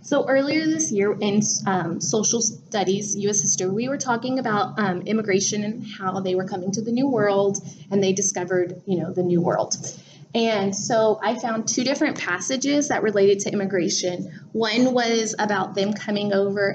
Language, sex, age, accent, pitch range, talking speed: English, female, 20-39, American, 195-230 Hz, 180 wpm